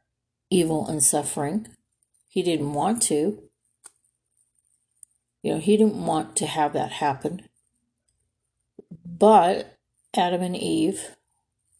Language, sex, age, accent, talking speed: English, female, 50-69, American, 100 wpm